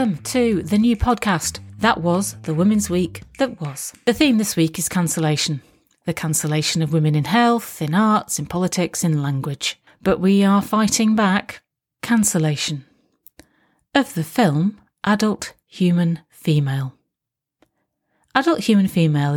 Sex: female